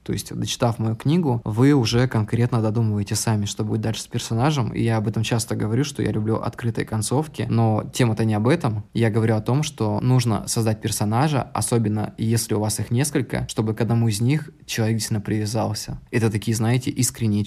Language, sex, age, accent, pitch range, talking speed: Russian, male, 20-39, native, 110-125 Hz, 195 wpm